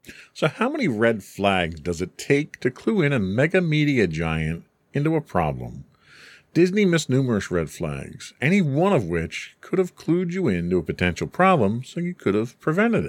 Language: English